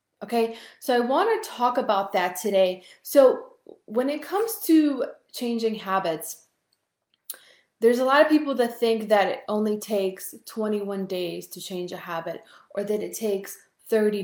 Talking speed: 160 wpm